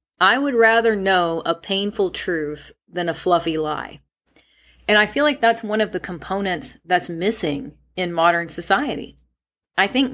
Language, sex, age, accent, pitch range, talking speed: English, female, 40-59, American, 160-215 Hz, 160 wpm